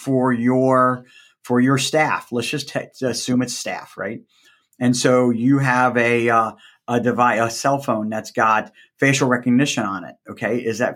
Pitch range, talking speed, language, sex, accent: 110-140 Hz, 180 wpm, English, male, American